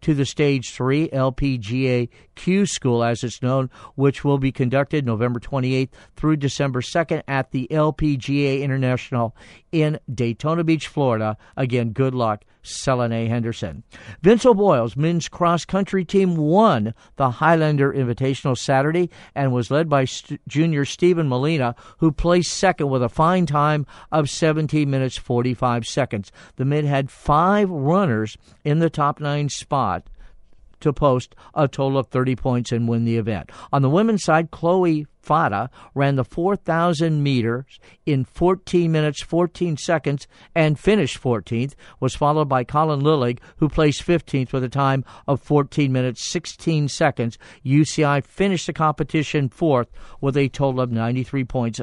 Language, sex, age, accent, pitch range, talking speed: English, male, 50-69, American, 125-155 Hz, 150 wpm